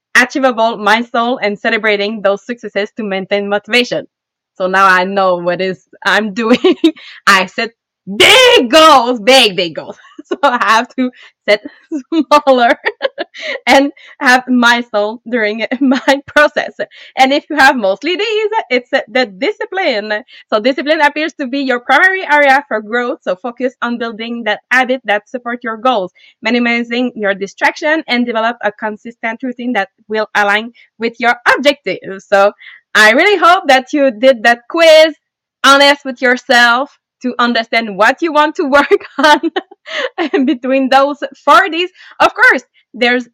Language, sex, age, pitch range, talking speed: English, female, 20-39, 215-290 Hz, 150 wpm